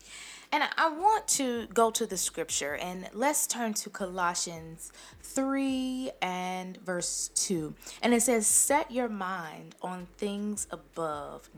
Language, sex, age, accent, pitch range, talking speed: English, female, 20-39, American, 190-240 Hz, 135 wpm